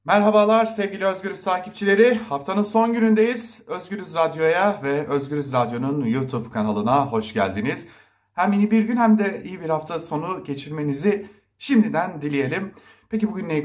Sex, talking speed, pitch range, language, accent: male, 140 wpm, 155-225 Hz, German, Turkish